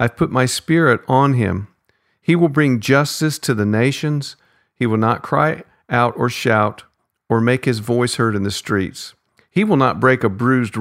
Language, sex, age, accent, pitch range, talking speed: English, male, 50-69, American, 110-130 Hz, 190 wpm